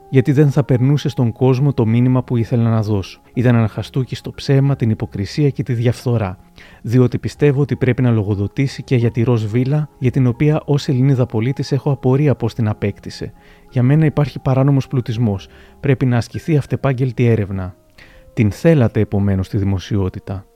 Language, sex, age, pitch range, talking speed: Greek, male, 30-49, 110-140 Hz, 165 wpm